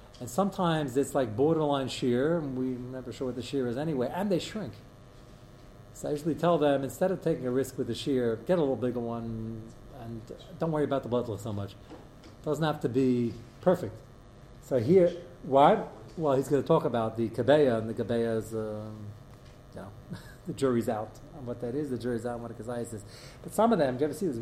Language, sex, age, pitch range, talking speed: English, male, 40-59, 120-185 Hz, 225 wpm